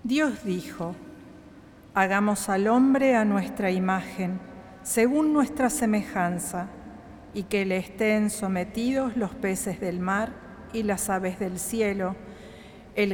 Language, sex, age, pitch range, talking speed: Spanish, female, 50-69, 185-230 Hz, 120 wpm